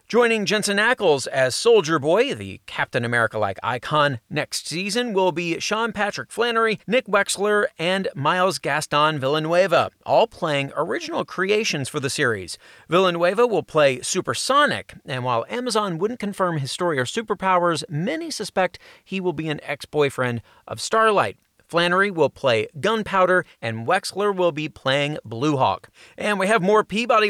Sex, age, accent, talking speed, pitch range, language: male, 40-59, American, 150 wpm, 145-205 Hz, English